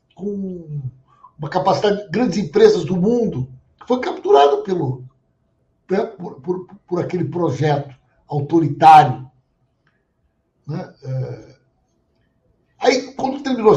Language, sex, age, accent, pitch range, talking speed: Portuguese, male, 60-79, Brazilian, 145-215 Hz, 90 wpm